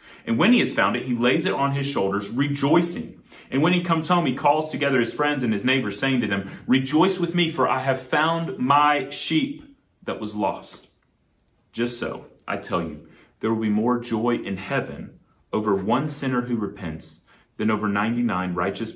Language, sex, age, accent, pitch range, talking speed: English, male, 30-49, American, 100-140 Hz, 195 wpm